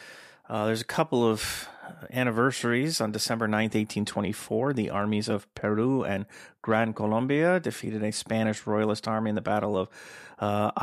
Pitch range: 105-120 Hz